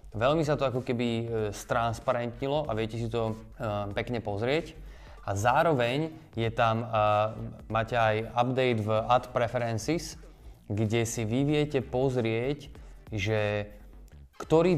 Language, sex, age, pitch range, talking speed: Slovak, male, 20-39, 105-125 Hz, 120 wpm